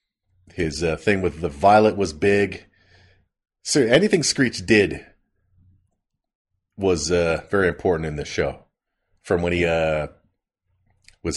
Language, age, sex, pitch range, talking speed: English, 40-59, male, 90-110 Hz, 125 wpm